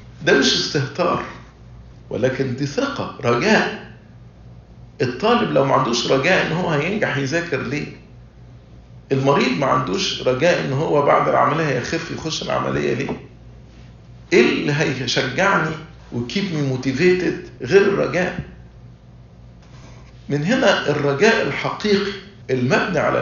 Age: 50-69